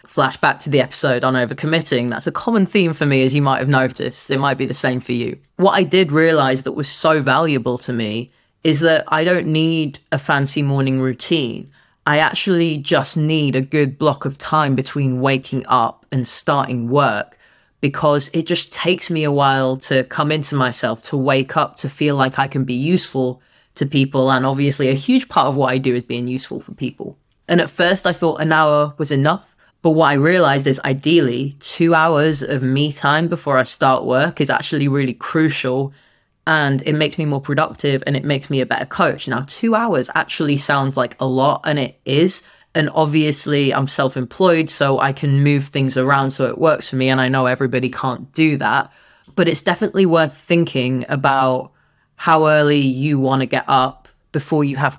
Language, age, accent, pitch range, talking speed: English, 20-39, British, 130-155 Hz, 200 wpm